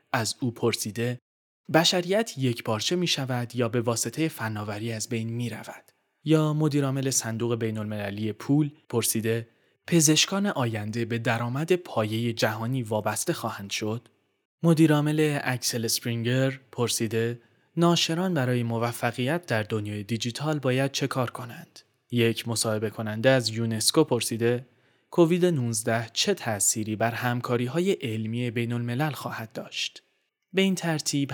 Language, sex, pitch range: Persian, male, 115-145 Hz